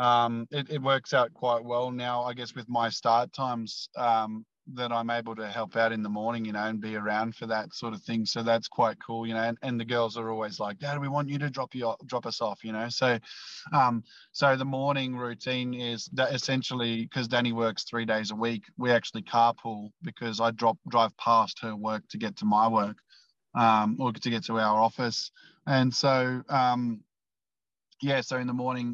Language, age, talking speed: English, 20-39, 220 wpm